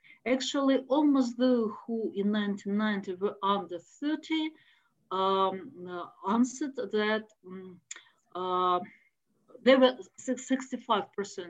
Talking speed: 85 wpm